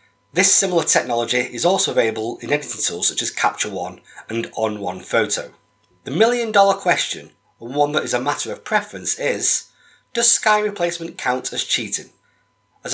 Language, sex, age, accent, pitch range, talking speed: English, male, 30-49, British, 115-180 Hz, 165 wpm